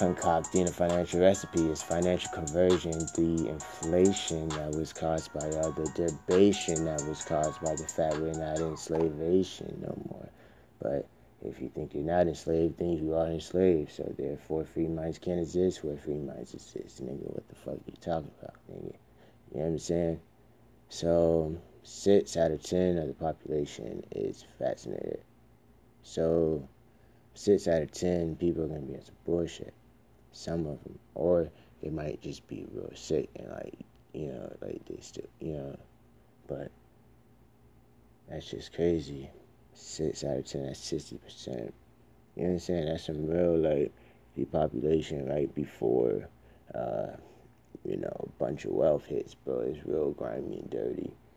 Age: 30-49